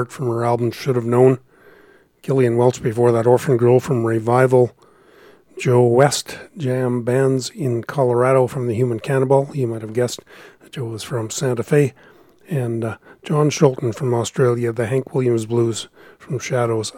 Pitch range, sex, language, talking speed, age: 120-135 Hz, male, English, 165 wpm, 40-59